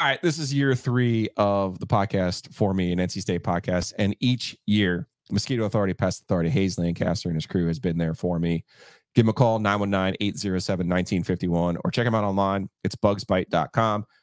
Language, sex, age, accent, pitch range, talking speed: English, male, 30-49, American, 95-125 Hz, 185 wpm